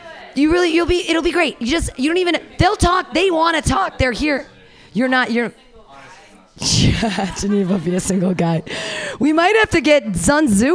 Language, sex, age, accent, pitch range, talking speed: English, female, 30-49, American, 215-320 Hz, 165 wpm